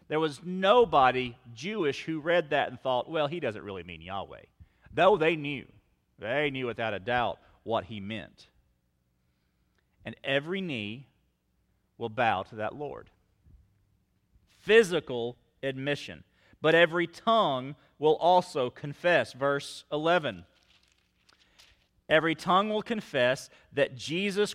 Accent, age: American, 40-59